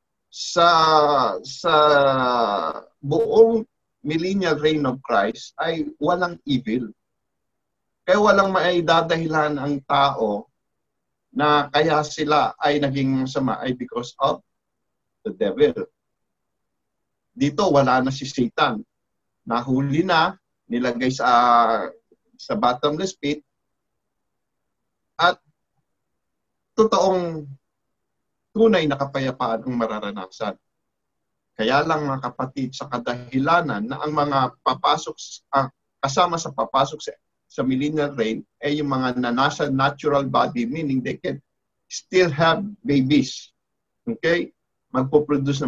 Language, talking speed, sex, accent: English, 100 wpm, male, Filipino